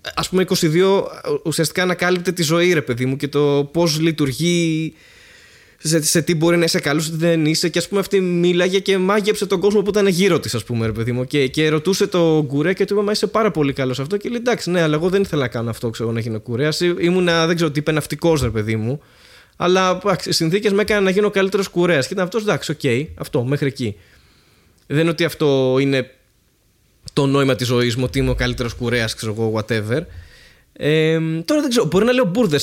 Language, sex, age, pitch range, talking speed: Greek, male, 20-39, 145-190 Hz, 230 wpm